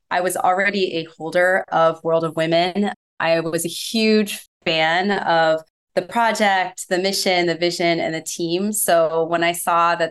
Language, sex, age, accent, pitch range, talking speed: English, female, 20-39, American, 160-190 Hz, 170 wpm